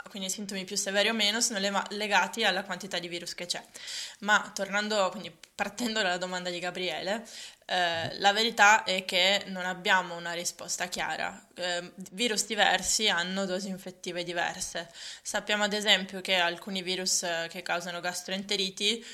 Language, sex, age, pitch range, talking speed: Italian, female, 20-39, 180-210 Hz, 155 wpm